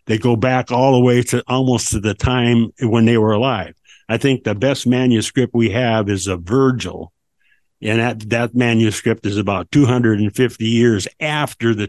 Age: 60-79